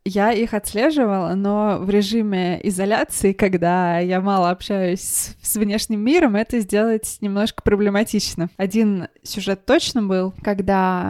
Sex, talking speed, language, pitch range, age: female, 125 wpm, Russian, 180-215 Hz, 20-39